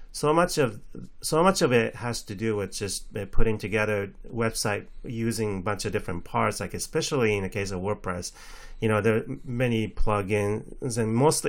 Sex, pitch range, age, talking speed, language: male, 100-120 Hz, 30-49, 190 wpm, English